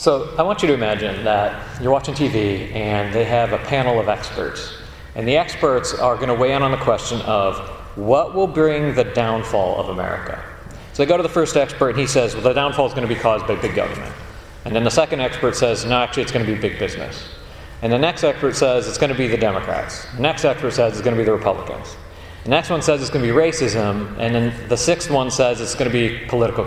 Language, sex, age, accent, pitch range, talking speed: English, male, 40-59, American, 105-140 Hz, 250 wpm